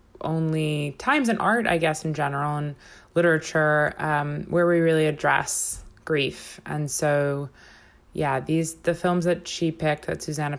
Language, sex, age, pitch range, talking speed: English, female, 20-39, 145-175 Hz, 155 wpm